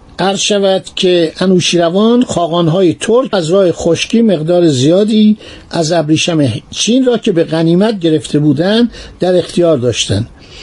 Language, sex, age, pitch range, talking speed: Persian, male, 60-79, 160-215 Hz, 130 wpm